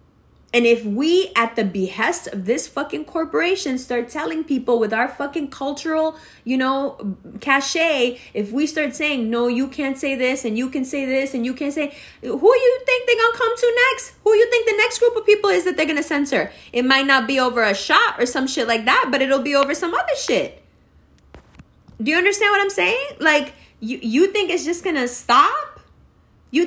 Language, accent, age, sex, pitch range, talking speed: English, American, 20-39, female, 235-340 Hz, 220 wpm